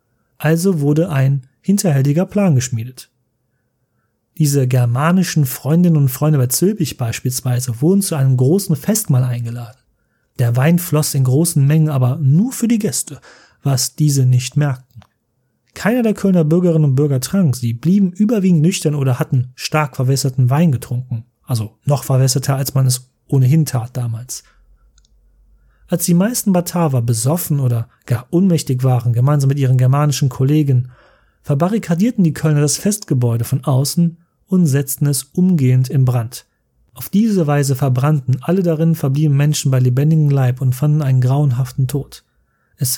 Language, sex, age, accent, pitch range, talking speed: German, male, 30-49, German, 125-160 Hz, 145 wpm